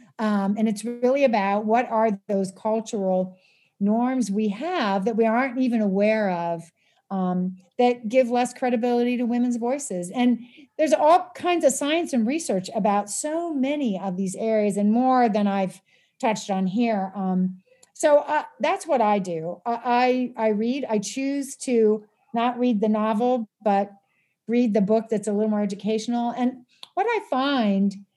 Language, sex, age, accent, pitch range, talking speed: English, female, 40-59, American, 210-260 Hz, 165 wpm